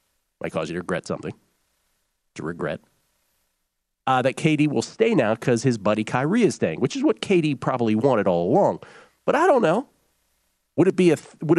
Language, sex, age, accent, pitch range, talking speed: English, male, 40-59, American, 110-165 Hz, 195 wpm